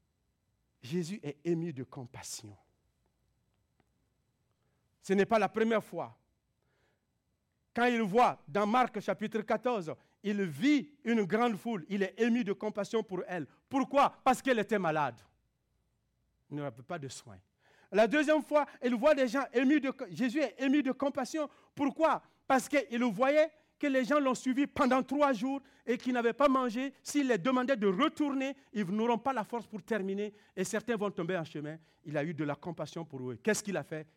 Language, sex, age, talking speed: French, male, 50-69, 180 wpm